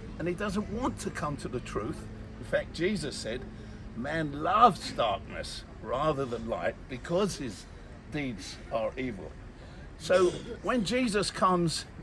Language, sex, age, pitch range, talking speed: English, male, 50-69, 125-185 Hz, 140 wpm